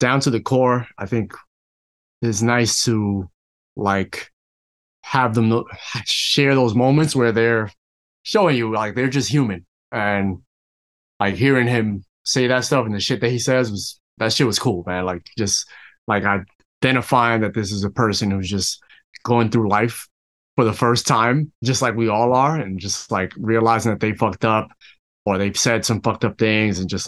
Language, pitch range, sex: English, 100-125 Hz, male